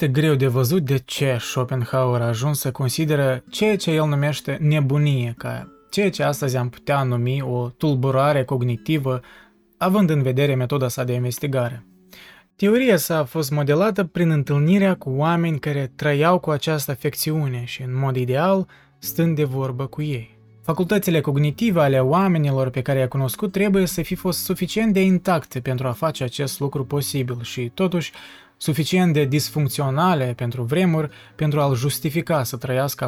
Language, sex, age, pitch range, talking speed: Romanian, male, 20-39, 130-160 Hz, 160 wpm